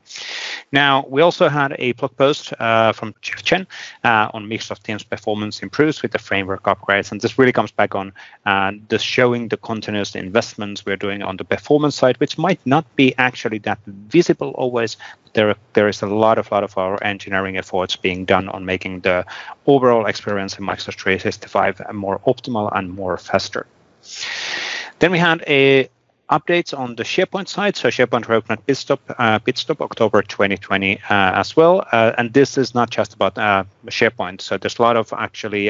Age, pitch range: 30-49, 100-130 Hz